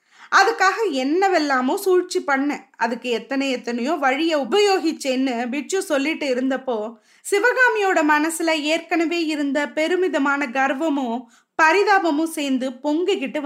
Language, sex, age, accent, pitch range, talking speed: Tamil, female, 20-39, native, 270-380 Hz, 100 wpm